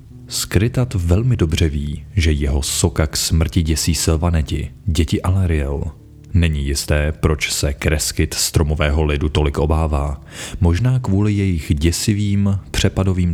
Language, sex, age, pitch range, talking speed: Czech, male, 30-49, 75-95 Hz, 115 wpm